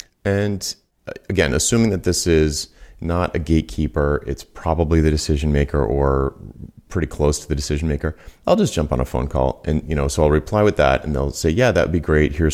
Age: 30-49